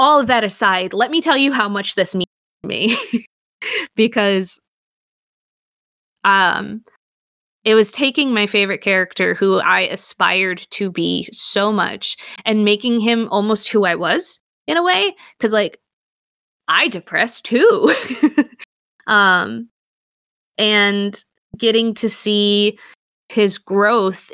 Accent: American